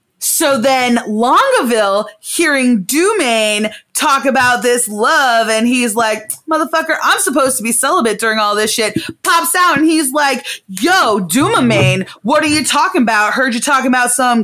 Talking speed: 160 wpm